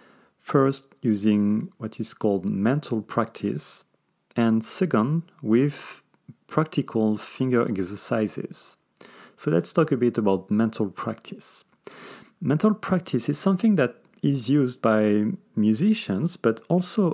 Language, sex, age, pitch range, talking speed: English, male, 40-59, 110-160 Hz, 110 wpm